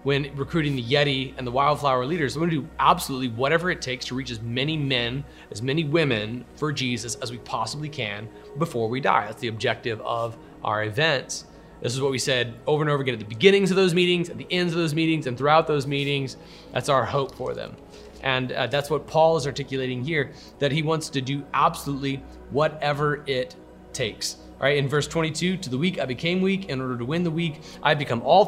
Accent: American